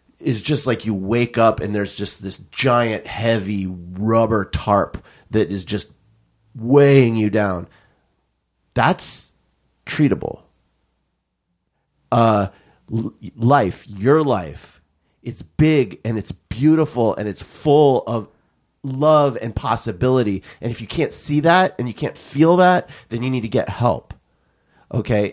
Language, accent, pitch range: English, American, 100-130 Hz